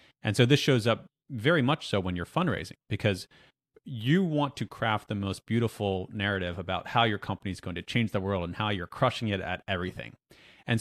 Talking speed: 210 wpm